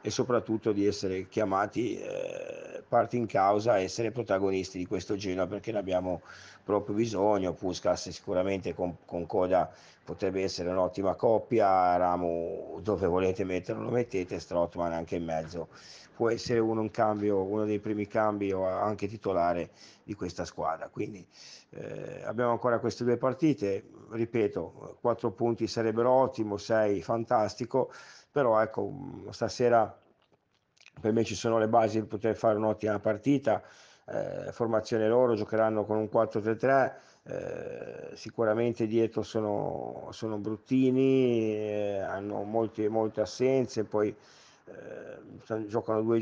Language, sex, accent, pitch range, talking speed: Italian, male, native, 105-115 Hz, 130 wpm